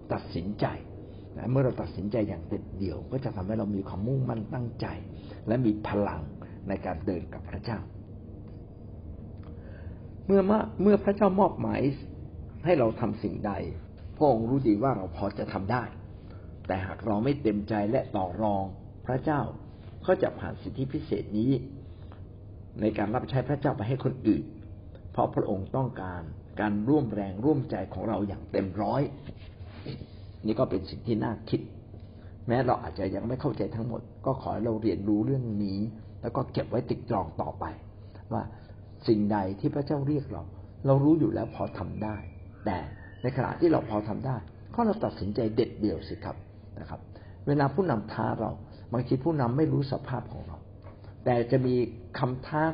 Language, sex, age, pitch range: Thai, male, 60-79, 100-125 Hz